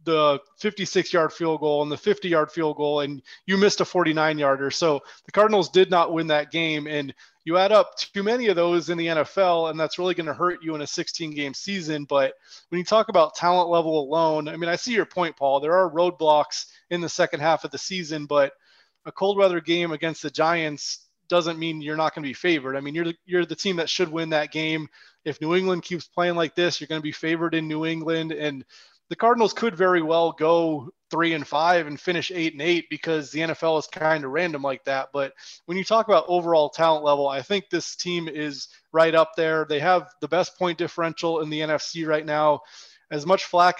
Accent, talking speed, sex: American, 230 wpm, male